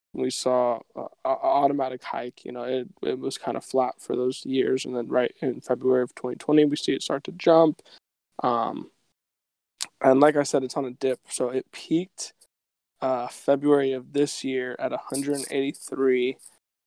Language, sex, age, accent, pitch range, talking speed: English, male, 20-39, American, 130-145 Hz, 190 wpm